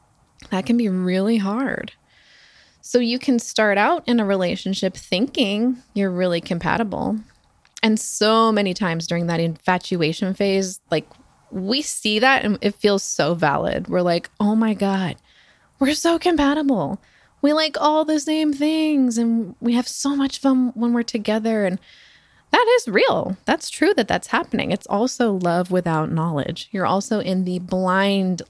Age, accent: 20-39, American